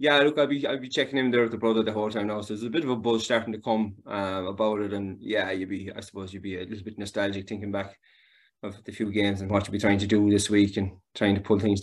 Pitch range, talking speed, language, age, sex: 100-110 Hz, 310 wpm, English, 20-39, male